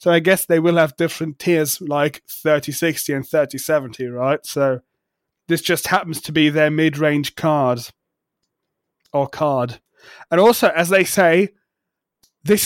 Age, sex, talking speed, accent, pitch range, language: 20-39, male, 140 wpm, British, 150-175 Hz, English